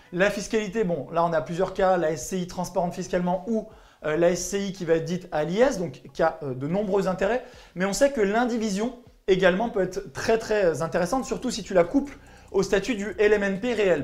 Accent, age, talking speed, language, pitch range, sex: French, 20-39, 205 wpm, French, 180-220 Hz, male